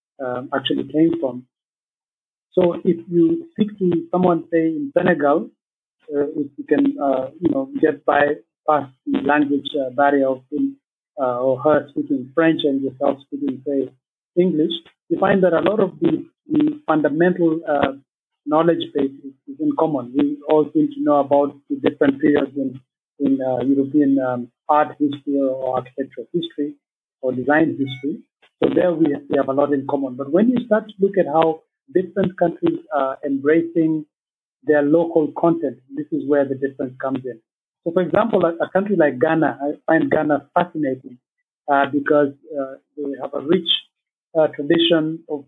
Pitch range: 140-170 Hz